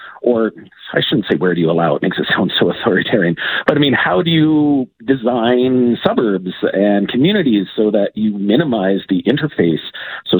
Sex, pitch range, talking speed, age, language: male, 95-125 Hz, 180 wpm, 40-59, English